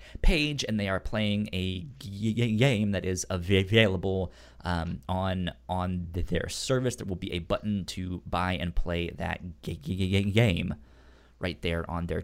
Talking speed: 145 wpm